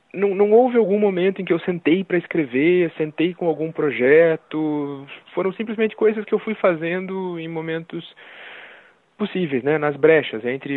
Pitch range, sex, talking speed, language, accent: 125-165 Hz, male, 160 wpm, Portuguese, Brazilian